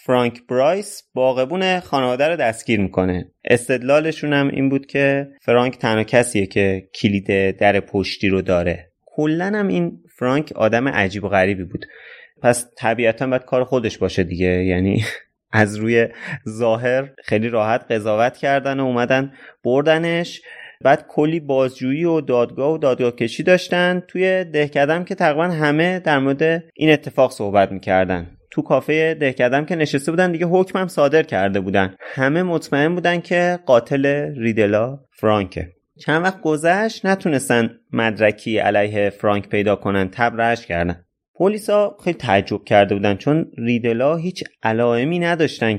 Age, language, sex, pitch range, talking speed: 30-49, Persian, male, 105-145 Hz, 145 wpm